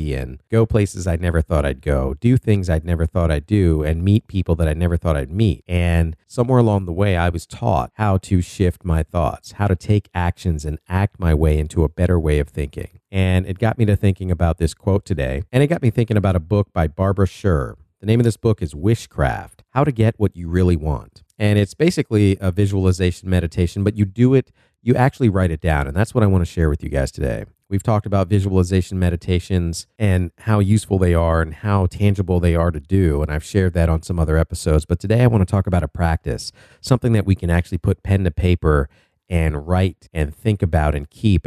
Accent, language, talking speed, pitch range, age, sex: American, English, 235 wpm, 85-105 Hz, 50-69, male